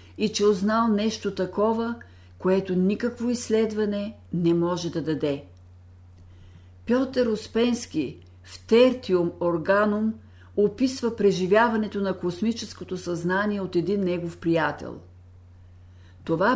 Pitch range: 140-210 Hz